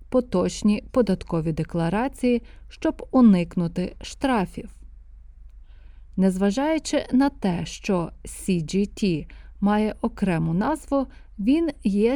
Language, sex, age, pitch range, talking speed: Ukrainian, female, 30-49, 170-245 Hz, 80 wpm